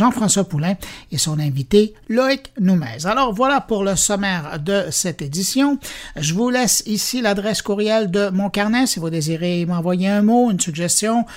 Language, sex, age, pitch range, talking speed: French, male, 60-79, 175-230 Hz, 170 wpm